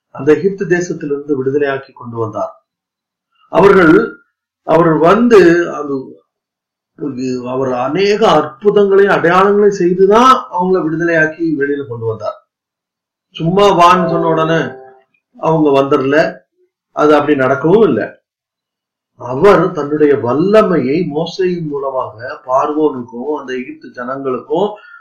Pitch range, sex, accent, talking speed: 145-205 Hz, male, native, 90 wpm